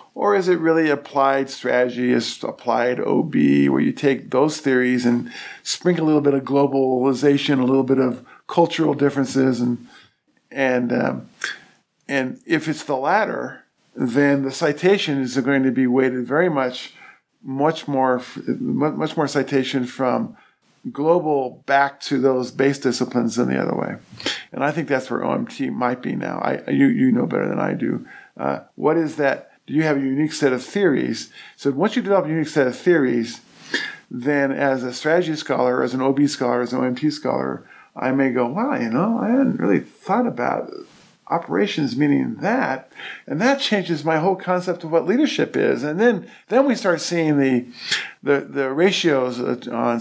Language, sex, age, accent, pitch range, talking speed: English, male, 50-69, American, 130-165 Hz, 175 wpm